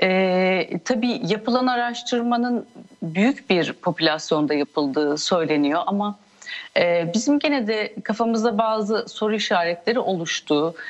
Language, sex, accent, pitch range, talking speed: Turkish, female, native, 180-230 Hz, 105 wpm